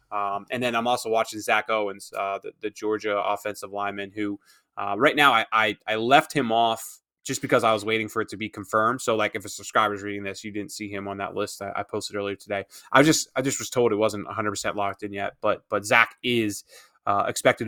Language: English